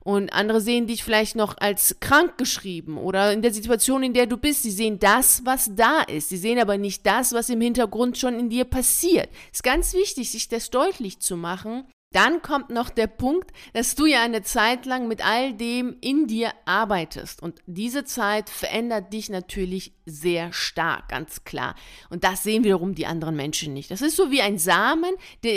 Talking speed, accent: 200 wpm, German